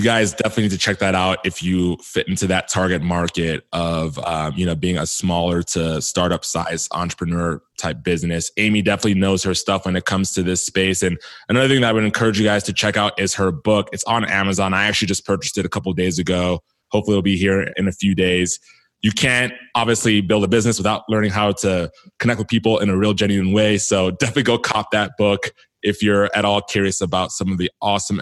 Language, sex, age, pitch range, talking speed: English, male, 20-39, 90-105 Hz, 230 wpm